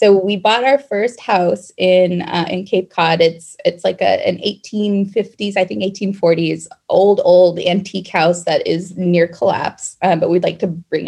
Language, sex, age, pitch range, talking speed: English, female, 20-39, 175-195 Hz, 185 wpm